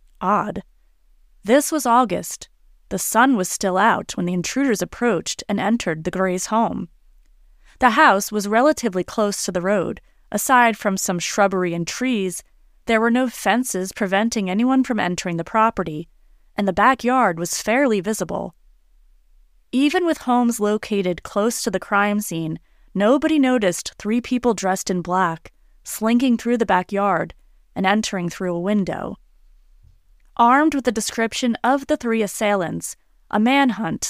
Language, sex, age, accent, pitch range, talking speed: English, female, 30-49, American, 190-240 Hz, 145 wpm